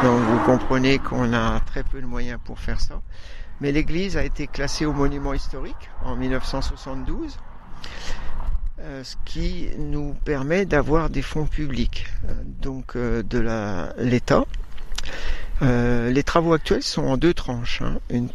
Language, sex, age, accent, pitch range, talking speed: French, male, 60-79, French, 115-140 Hz, 145 wpm